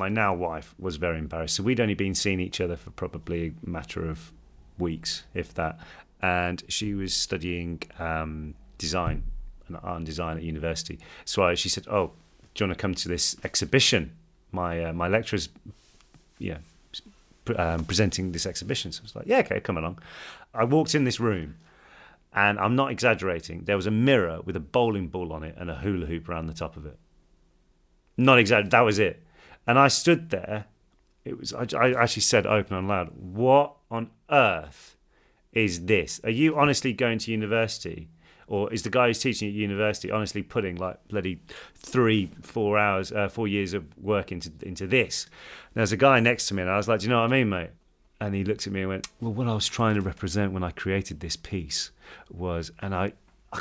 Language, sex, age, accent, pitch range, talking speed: English, male, 40-59, British, 85-110 Hz, 205 wpm